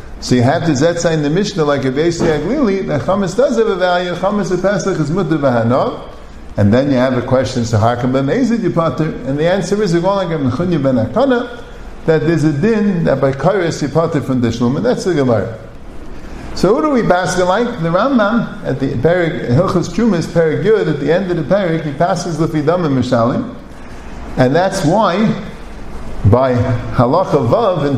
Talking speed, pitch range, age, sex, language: 180 wpm, 140-195 Hz, 50-69, male, English